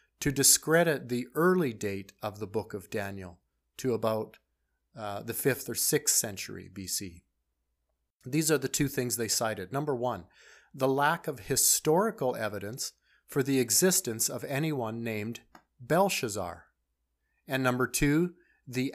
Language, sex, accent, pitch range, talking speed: English, male, American, 105-135 Hz, 140 wpm